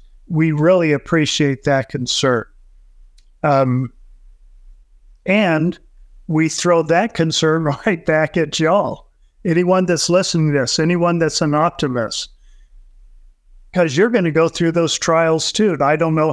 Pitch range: 140-170 Hz